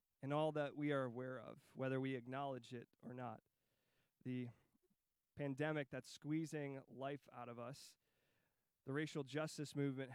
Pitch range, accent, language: 130-160 Hz, American, English